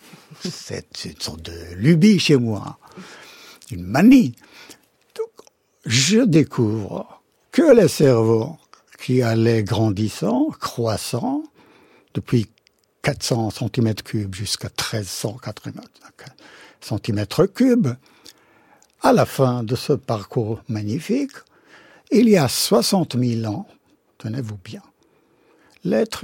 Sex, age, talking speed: male, 60-79, 95 wpm